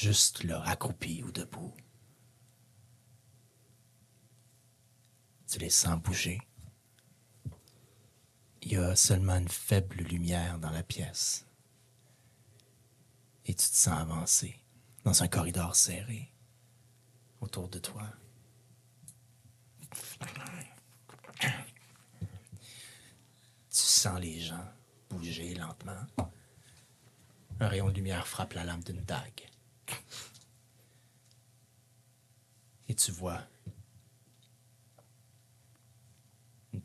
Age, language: 40-59, French